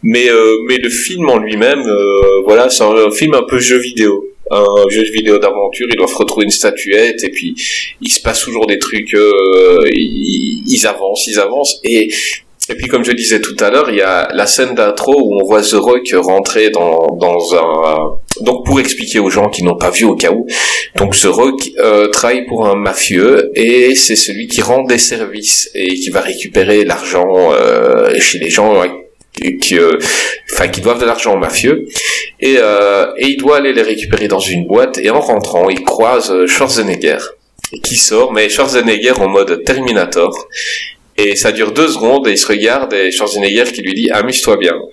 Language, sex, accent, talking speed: French, male, French, 205 wpm